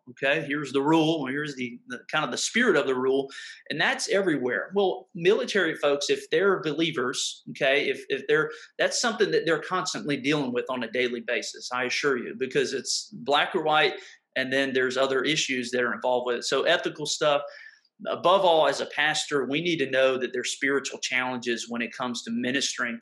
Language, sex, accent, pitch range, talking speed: English, male, American, 125-160 Hz, 205 wpm